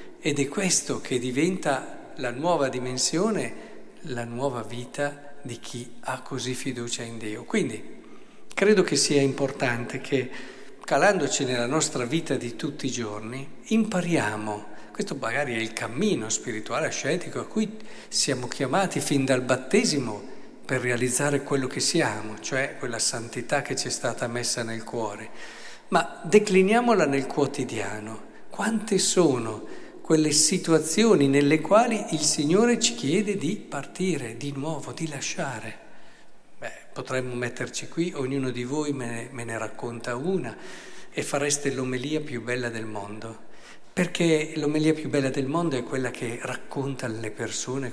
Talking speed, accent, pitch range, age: 140 wpm, native, 120-160 Hz, 50-69